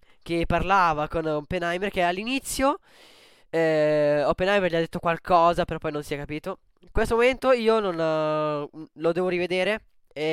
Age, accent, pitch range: 10-29, native, 150-200 Hz